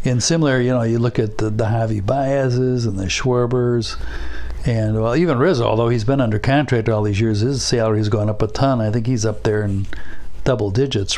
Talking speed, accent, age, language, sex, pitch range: 215 wpm, American, 60-79, English, male, 110-135 Hz